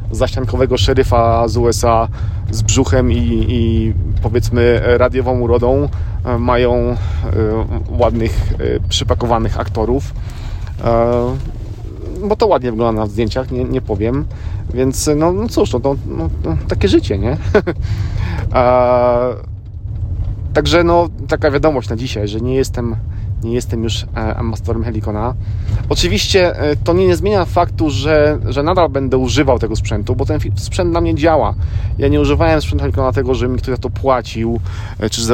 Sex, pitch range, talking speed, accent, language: male, 100-125 Hz, 140 wpm, native, Polish